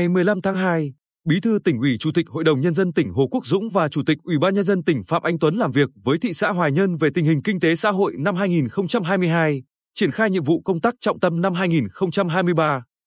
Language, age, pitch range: Vietnamese, 20-39, 150-195 Hz